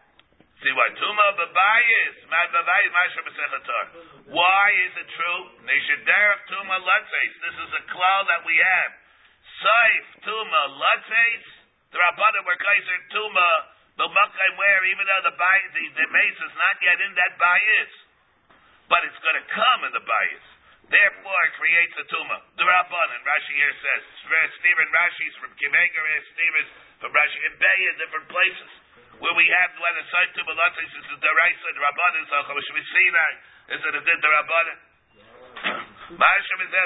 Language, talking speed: English, 145 wpm